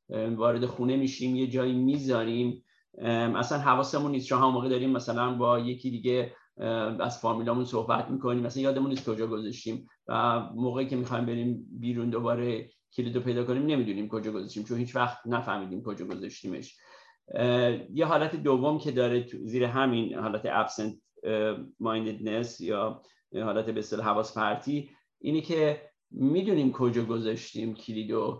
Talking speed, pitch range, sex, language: 140 wpm, 115-135 Hz, male, Persian